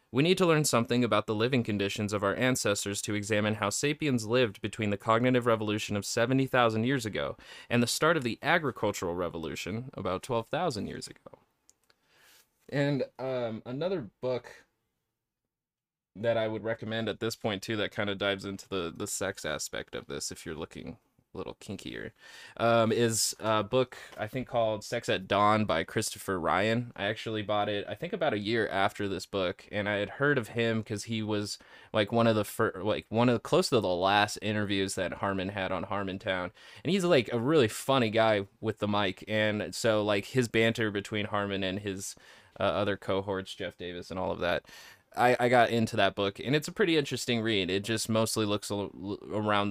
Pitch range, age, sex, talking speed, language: 100-120 Hz, 20-39, male, 200 wpm, English